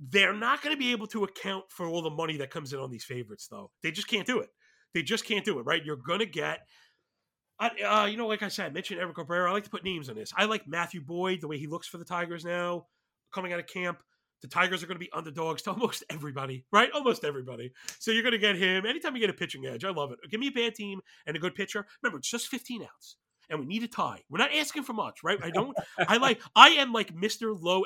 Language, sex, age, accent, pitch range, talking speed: English, male, 30-49, American, 155-215 Hz, 280 wpm